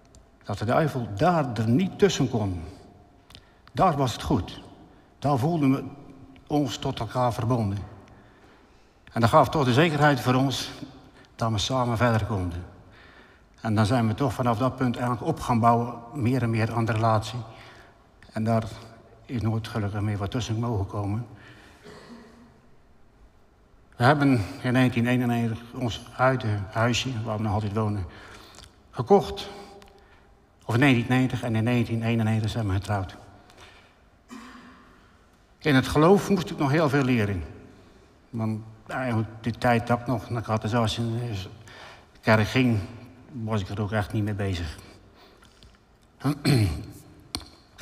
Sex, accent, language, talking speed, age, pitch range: male, Dutch, Dutch, 145 wpm, 60-79, 105-130 Hz